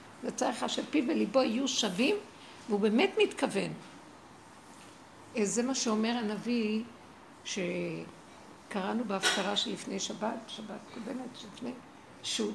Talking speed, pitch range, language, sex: 90 wpm, 205-275 Hz, Hebrew, female